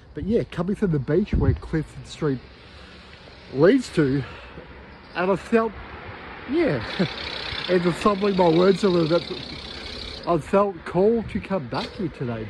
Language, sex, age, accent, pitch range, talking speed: English, male, 50-69, Australian, 115-155 Hz, 150 wpm